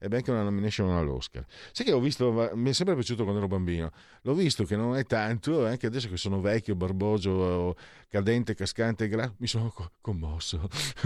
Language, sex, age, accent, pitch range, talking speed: Italian, male, 50-69, native, 85-120 Hz, 185 wpm